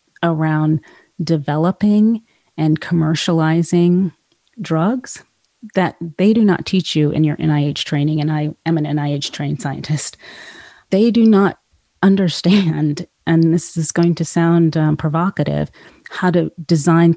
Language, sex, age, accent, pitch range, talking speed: English, female, 30-49, American, 150-170 Hz, 130 wpm